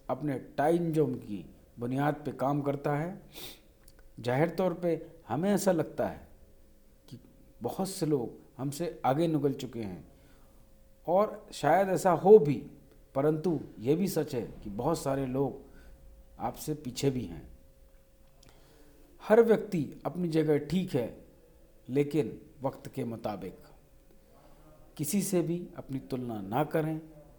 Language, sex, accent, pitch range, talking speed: Hindi, male, native, 135-160 Hz, 130 wpm